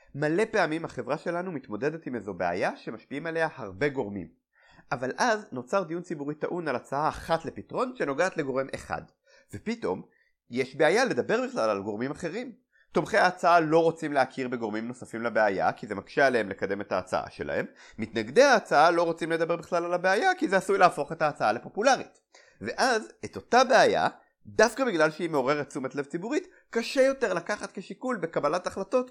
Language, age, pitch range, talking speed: Hebrew, 30-49, 150-215 Hz, 165 wpm